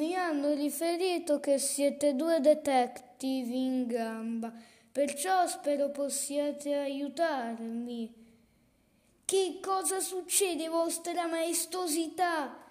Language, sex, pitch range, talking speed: Italian, female, 230-300 Hz, 85 wpm